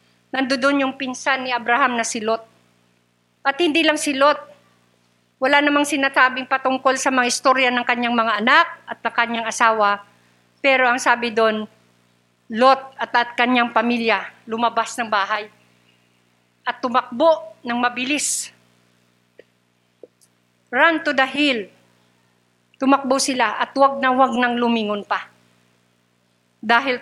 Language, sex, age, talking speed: Filipino, female, 50-69, 130 wpm